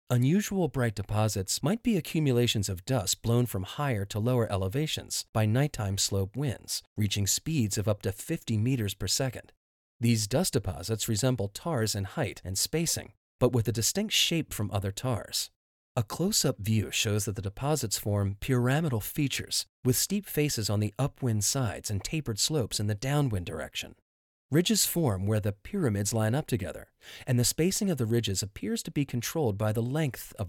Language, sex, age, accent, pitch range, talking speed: English, male, 40-59, American, 100-135 Hz, 175 wpm